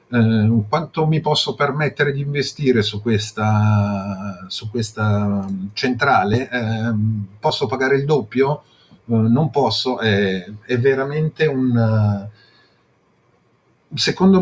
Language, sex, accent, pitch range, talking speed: Italian, male, native, 105-145 Hz, 105 wpm